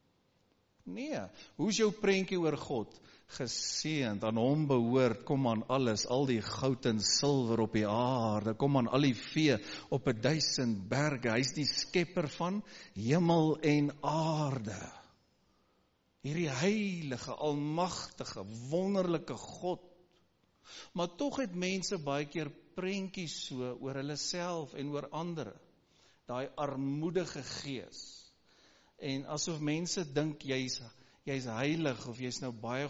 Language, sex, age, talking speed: English, male, 50-69, 135 wpm